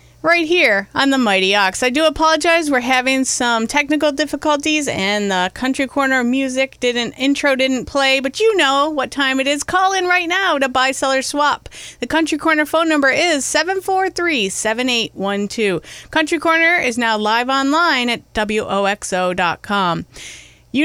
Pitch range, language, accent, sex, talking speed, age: 235-315 Hz, English, American, female, 155 wpm, 30-49